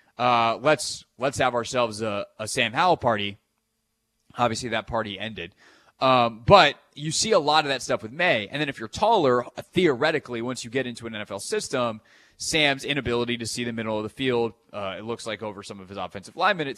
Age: 20-39